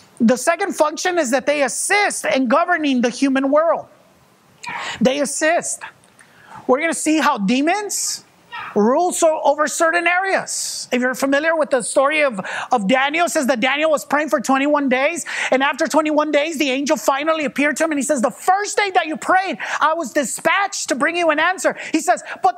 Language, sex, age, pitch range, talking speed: English, male, 30-49, 270-345 Hz, 190 wpm